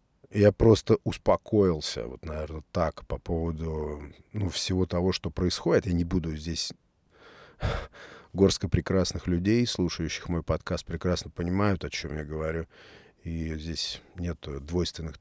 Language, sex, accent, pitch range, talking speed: Russian, male, native, 85-100 Hz, 130 wpm